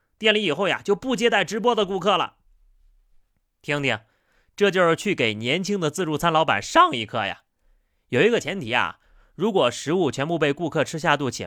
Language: Chinese